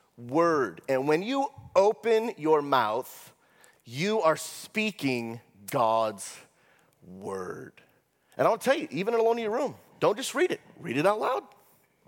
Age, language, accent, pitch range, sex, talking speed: 30-49, English, American, 155-245 Hz, male, 150 wpm